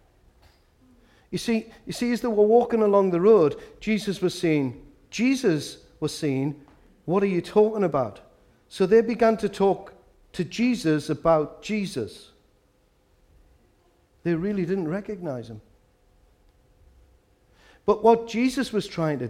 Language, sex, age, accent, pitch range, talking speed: English, male, 50-69, British, 150-210 Hz, 130 wpm